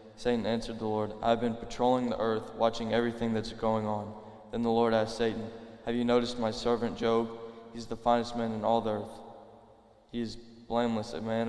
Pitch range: 110-115 Hz